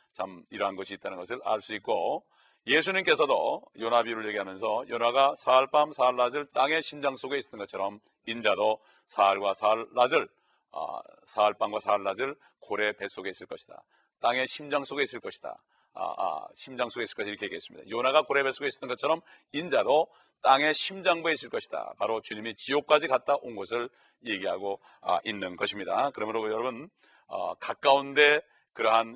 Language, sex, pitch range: Korean, male, 110-140 Hz